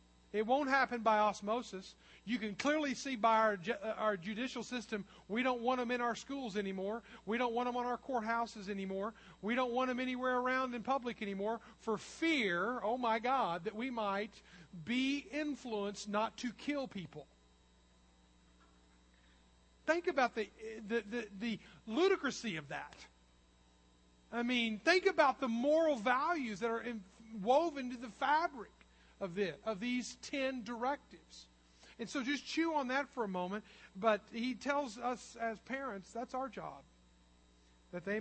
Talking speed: 160 wpm